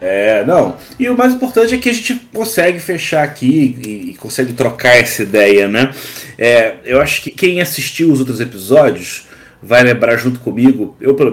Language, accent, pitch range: Portuguese, Brazilian, 120-150 Hz